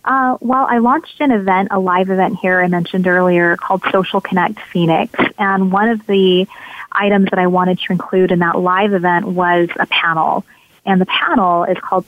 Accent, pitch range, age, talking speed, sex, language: American, 175-200 Hz, 20-39, 195 wpm, female, English